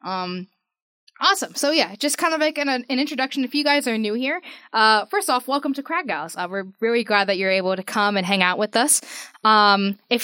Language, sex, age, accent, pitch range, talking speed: English, female, 10-29, American, 200-255 Hz, 230 wpm